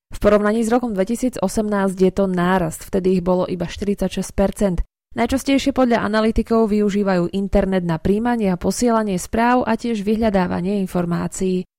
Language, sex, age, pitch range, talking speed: Slovak, female, 20-39, 180-225 Hz, 135 wpm